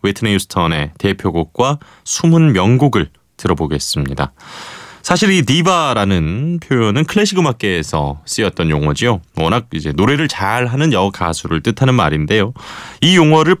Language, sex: Korean, male